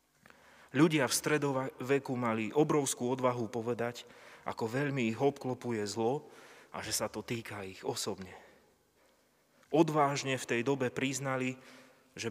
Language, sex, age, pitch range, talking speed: Slovak, male, 30-49, 115-145 Hz, 120 wpm